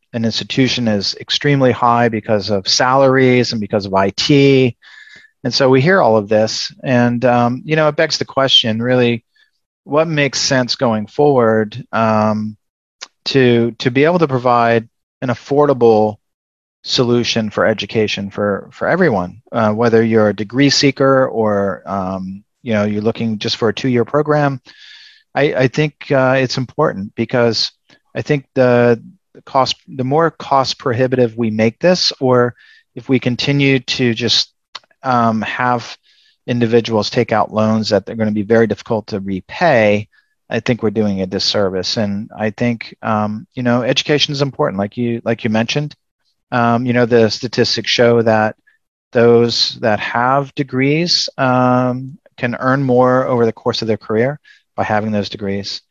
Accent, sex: American, male